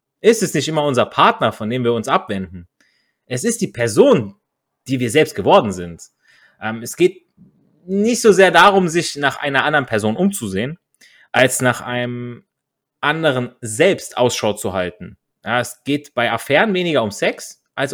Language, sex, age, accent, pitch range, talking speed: German, male, 30-49, German, 120-175 Hz, 165 wpm